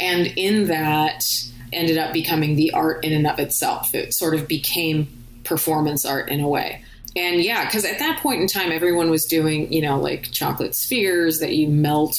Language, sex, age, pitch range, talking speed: English, female, 30-49, 140-160 Hz, 195 wpm